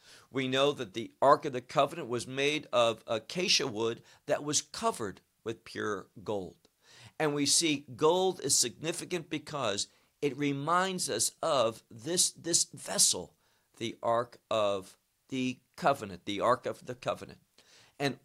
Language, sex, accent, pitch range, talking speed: English, male, American, 125-165 Hz, 145 wpm